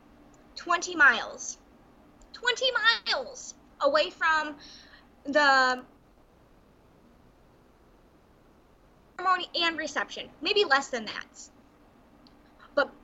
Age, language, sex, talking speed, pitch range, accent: 20-39, English, female, 70 wpm, 280-370 Hz, American